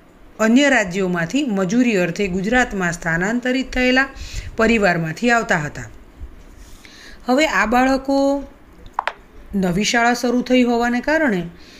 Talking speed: 95 wpm